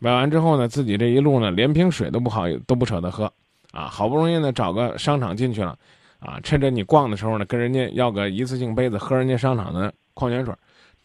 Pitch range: 110-150 Hz